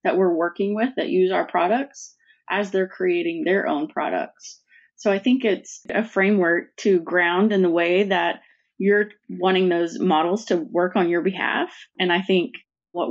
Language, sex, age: English, female, 20-39